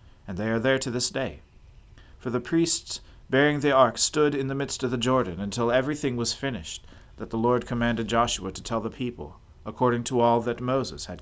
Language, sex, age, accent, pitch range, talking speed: English, male, 40-59, American, 100-130 Hz, 210 wpm